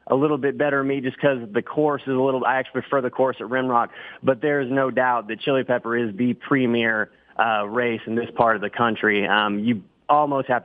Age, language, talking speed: 30-49, English, 235 wpm